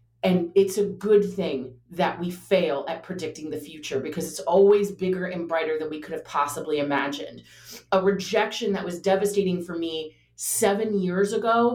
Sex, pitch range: female, 175-245 Hz